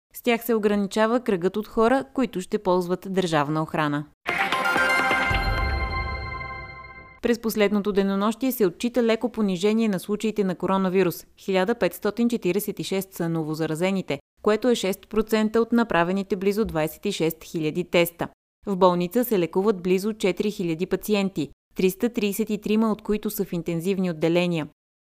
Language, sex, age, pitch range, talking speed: Bulgarian, female, 20-39, 170-215 Hz, 120 wpm